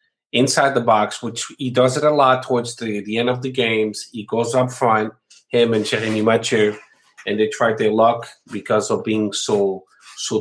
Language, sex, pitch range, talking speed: English, male, 100-120 Hz, 195 wpm